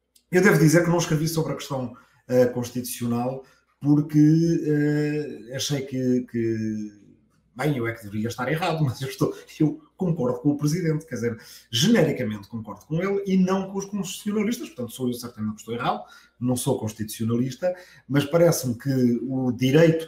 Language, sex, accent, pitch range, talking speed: Portuguese, male, Portuguese, 120-160 Hz, 160 wpm